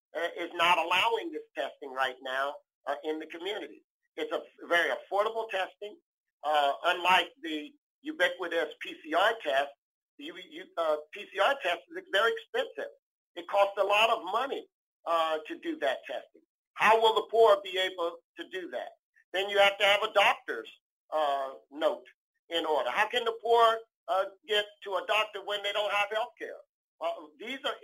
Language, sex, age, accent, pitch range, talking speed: English, male, 50-69, American, 165-225 Hz, 165 wpm